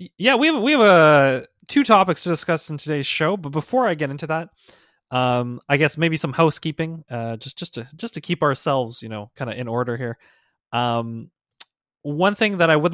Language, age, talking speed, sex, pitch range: English, 20-39, 200 wpm, male, 115-165 Hz